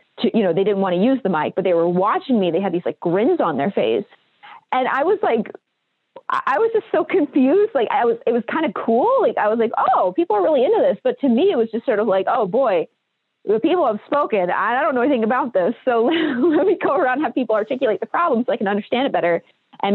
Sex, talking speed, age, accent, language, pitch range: female, 270 wpm, 30-49, American, English, 195-290 Hz